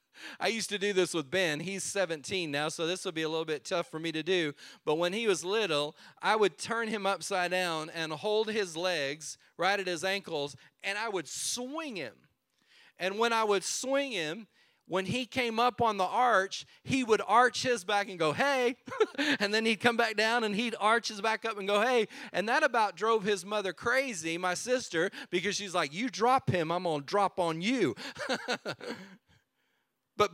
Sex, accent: male, American